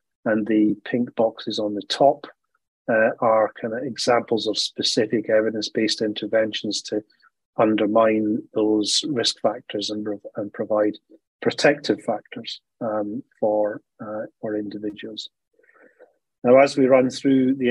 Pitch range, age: 105-115 Hz, 30-49